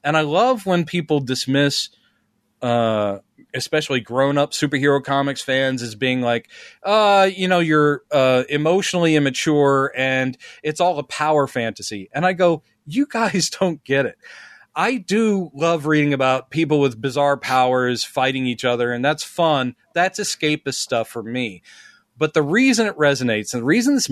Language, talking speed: English, 165 wpm